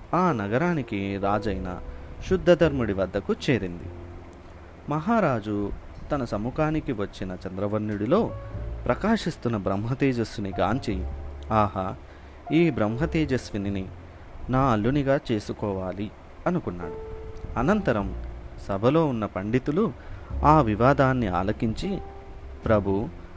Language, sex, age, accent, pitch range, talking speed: Telugu, male, 30-49, native, 90-125 Hz, 75 wpm